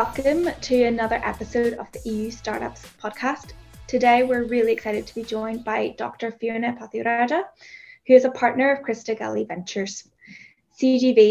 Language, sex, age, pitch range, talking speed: English, female, 10-29, 220-240 Hz, 155 wpm